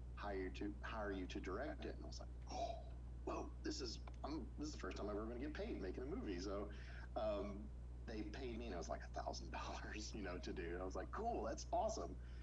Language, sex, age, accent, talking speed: English, male, 40-59, American, 260 wpm